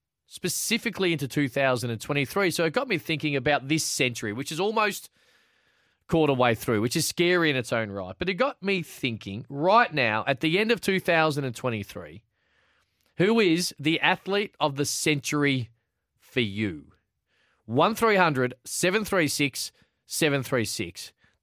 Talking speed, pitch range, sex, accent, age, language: 130 wpm, 130-185 Hz, male, Australian, 20-39, English